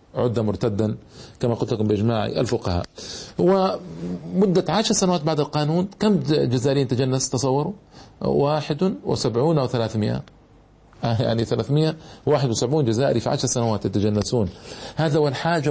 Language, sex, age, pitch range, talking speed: Arabic, male, 50-69, 120-160 Hz, 110 wpm